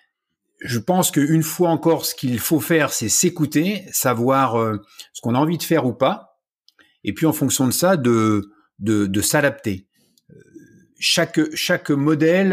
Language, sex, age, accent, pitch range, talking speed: French, male, 50-69, French, 105-155 Hz, 160 wpm